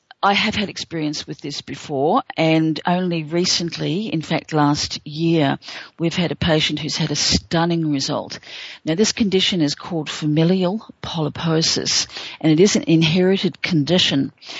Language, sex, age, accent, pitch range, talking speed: English, female, 50-69, Australian, 150-170 Hz, 150 wpm